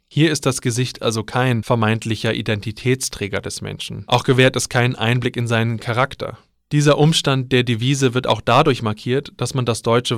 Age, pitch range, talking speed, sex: 20-39, 110-135 Hz, 175 wpm, male